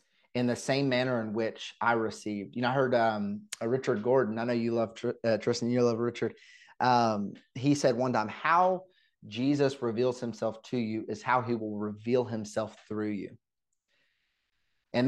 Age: 30-49